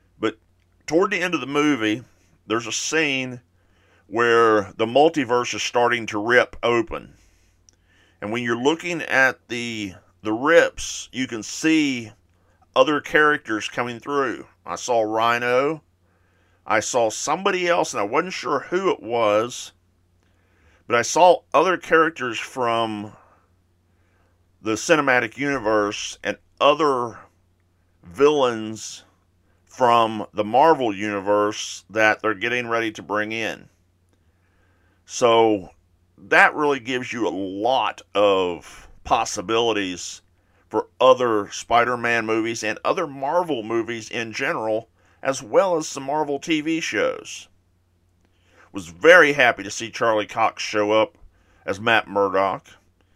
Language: English